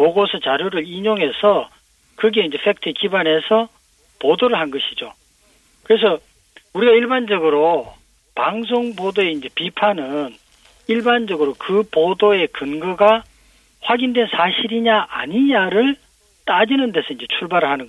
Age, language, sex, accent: 40-59, Korean, male, native